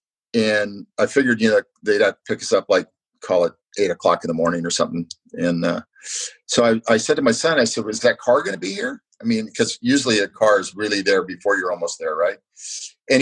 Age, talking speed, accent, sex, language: 50-69, 250 wpm, American, male, English